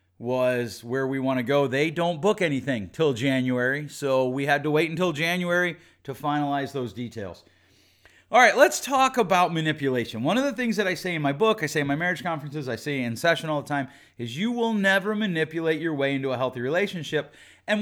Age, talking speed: 30-49, 215 wpm